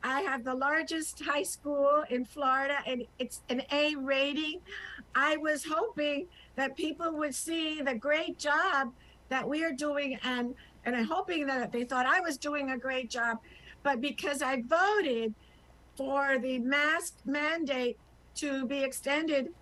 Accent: American